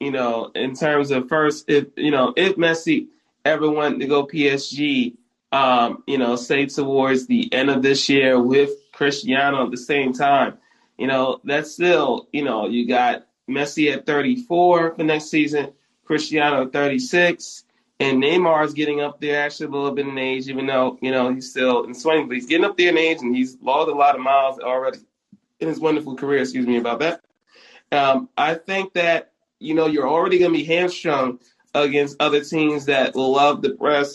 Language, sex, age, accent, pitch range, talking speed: English, male, 20-39, American, 130-155 Hz, 195 wpm